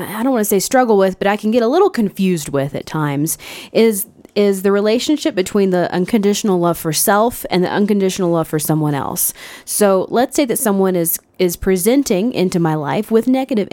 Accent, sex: American, female